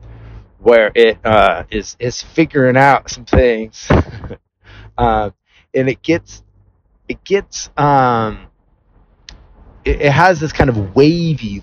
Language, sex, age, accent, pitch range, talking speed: English, male, 30-49, American, 95-130 Hz, 120 wpm